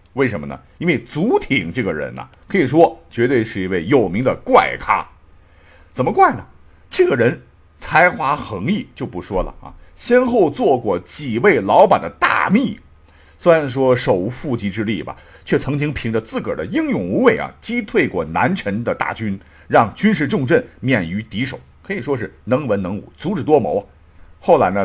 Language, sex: Chinese, male